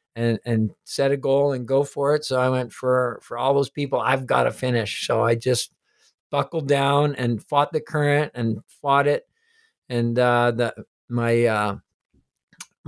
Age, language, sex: 50-69, English, male